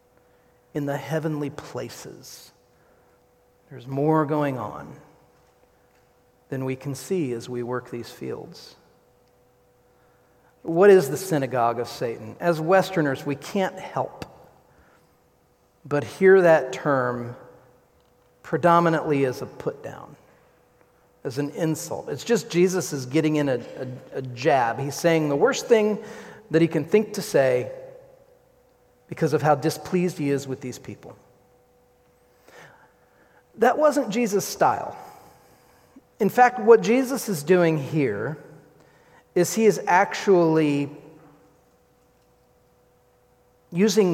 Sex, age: male, 40-59